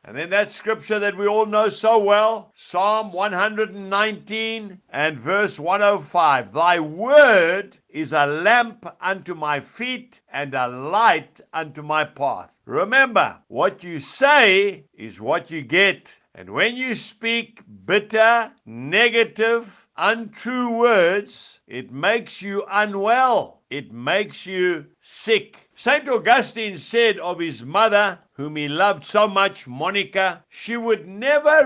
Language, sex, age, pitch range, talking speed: English, male, 60-79, 160-230 Hz, 130 wpm